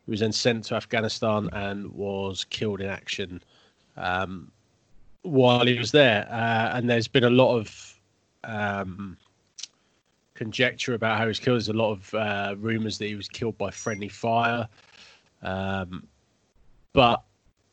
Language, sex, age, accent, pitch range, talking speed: English, male, 20-39, British, 105-125 Hz, 150 wpm